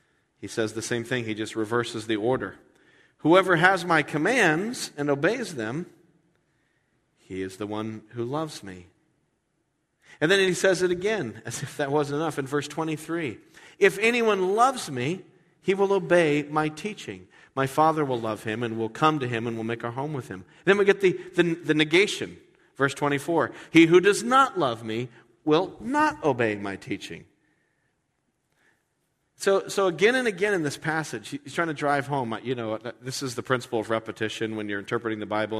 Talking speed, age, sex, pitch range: 185 wpm, 40-59, male, 110-165 Hz